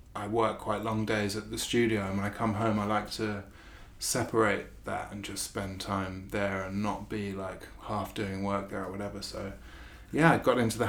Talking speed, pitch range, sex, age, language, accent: 215 wpm, 100-110 Hz, male, 20-39, English, British